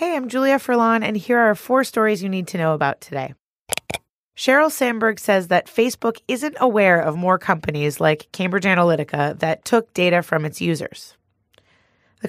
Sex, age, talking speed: female, 30-49, 170 wpm